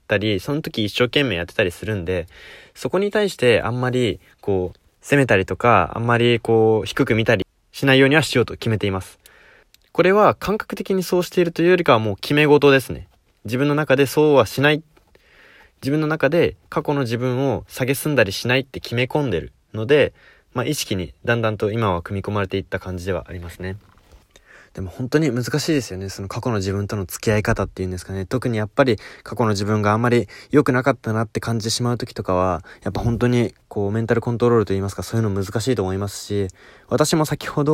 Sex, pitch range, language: male, 100-145 Hz, Japanese